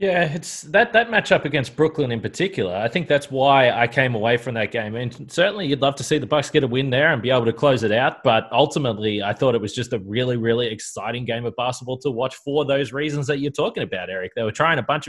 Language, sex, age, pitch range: English, male, 20-39, 115-145 Hz